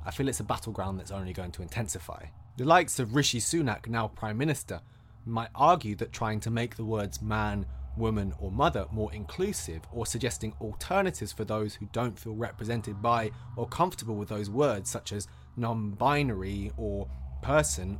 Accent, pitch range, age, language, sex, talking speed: British, 95-130 Hz, 20-39, English, male, 175 wpm